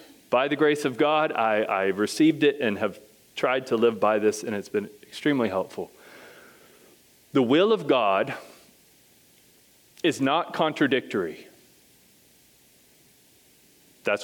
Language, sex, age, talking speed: English, male, 30-49, 120 wpm